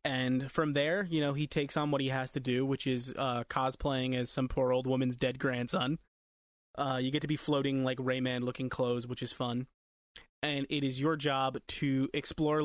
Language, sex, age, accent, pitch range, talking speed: English, male, 20-39, American, 130-150 Hz, 205 wpm